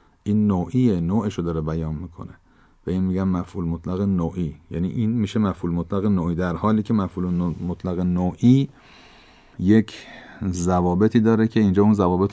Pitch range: 90-110 Hz